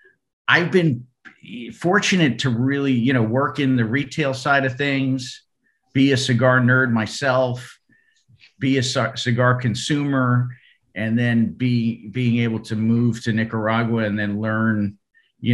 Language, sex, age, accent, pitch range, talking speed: English, male, 50-69, American, 105-130 Hz, 140 wpm